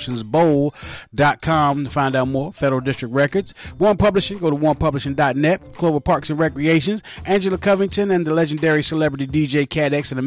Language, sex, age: English, male, 30-49